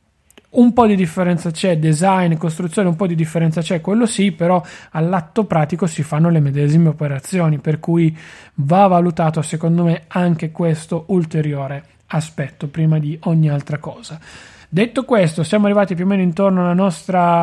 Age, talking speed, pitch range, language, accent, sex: 30-49, 160 wpm, 160-185 Hz, Italian, native, male